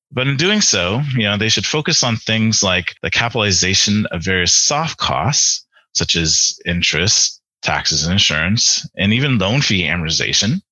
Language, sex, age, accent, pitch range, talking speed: English, male, 30-49, American, 90-125 Hz, 160 wpm